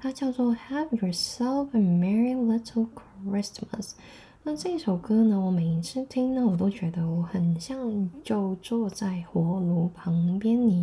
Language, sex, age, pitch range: Chinese, female, 10-29, 180-235 Hz